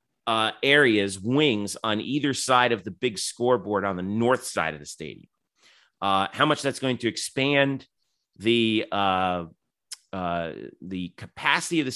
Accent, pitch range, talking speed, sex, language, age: American, 95-120 Hz, 155 wpm, male, English, 30-49